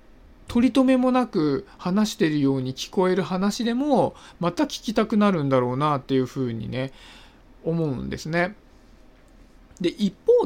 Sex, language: male, Japanese